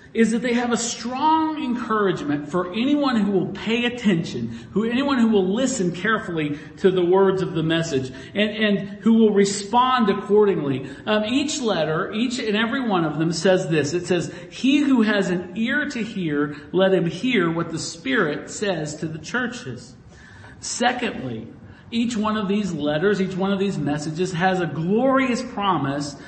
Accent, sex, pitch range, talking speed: American, male, 165-220 Hz, 175 wpm